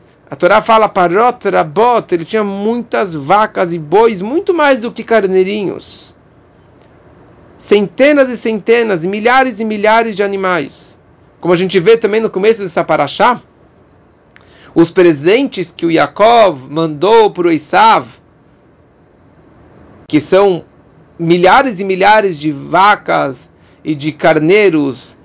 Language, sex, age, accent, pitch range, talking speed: English, male, 40-59, Brazilian, 165-235 Hz, 125 wpm